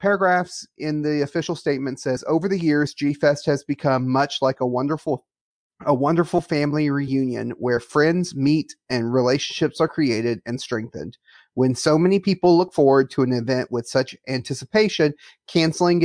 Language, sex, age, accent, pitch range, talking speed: English, male, 30-49, American, 125-155 Hz, 155 wpm